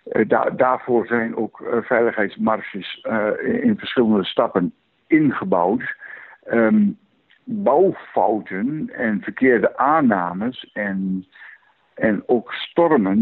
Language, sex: Dutch, male